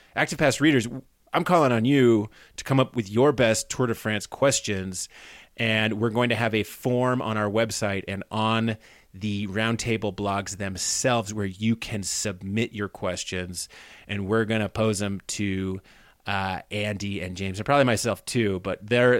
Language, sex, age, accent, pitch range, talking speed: English, male, 30-49, American, 95-120 Hz, 175 wpm